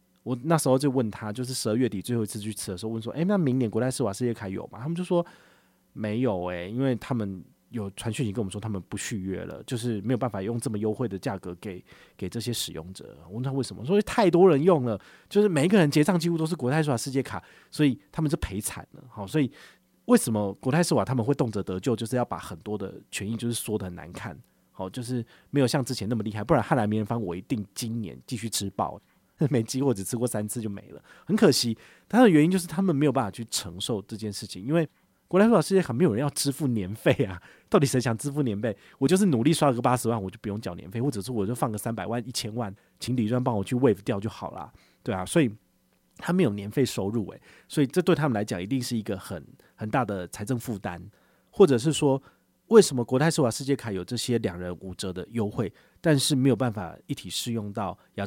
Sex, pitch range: male, 100-135 Hz